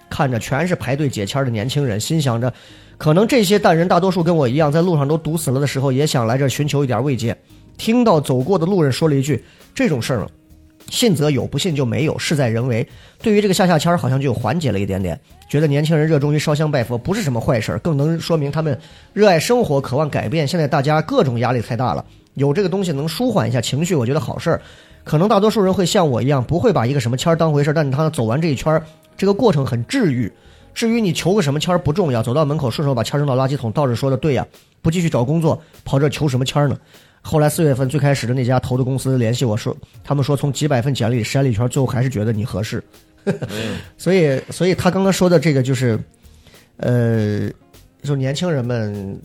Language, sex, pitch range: Chinese, male, 120-160 Hz